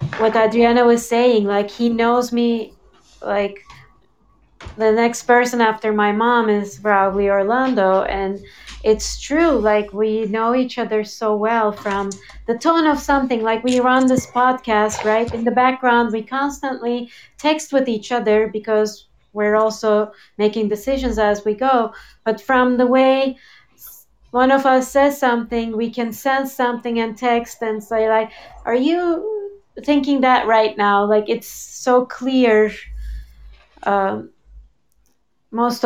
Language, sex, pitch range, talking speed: English, female, 210-250 Hz, 145 wpm